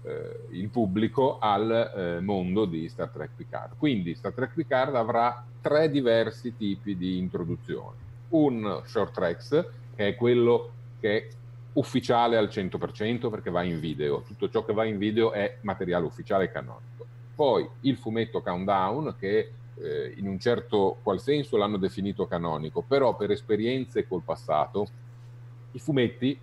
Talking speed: 150 wpm